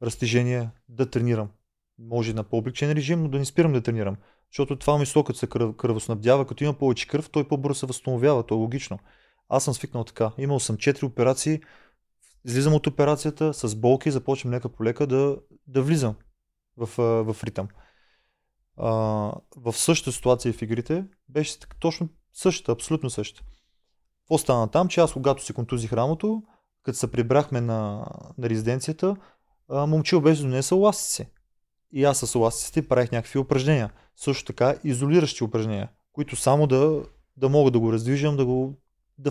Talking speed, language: 160 wpm, Bulgarian